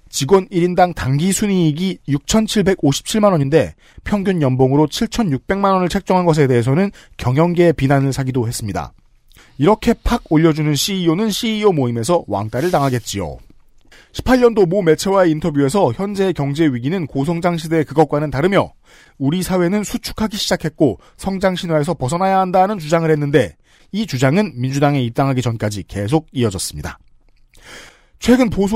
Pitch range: 135-185 Hz